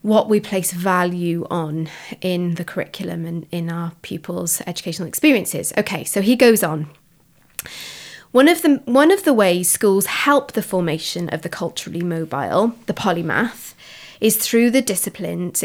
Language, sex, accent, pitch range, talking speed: English, female, British, 175-225 Hz, 155 wpm